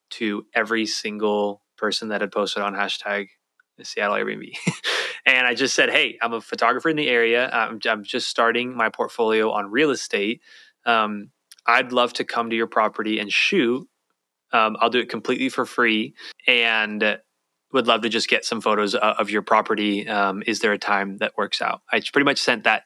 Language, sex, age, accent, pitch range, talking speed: English, male, 20-39, American, 105-120 Hz, 190 wpm